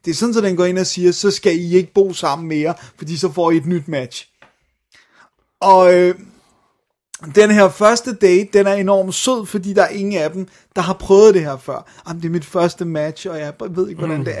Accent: native